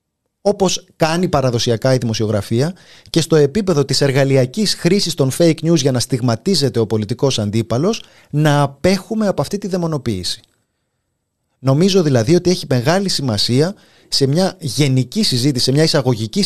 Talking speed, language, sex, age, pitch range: 140 wpm, Greek, male, 30-49, 125-175 Hz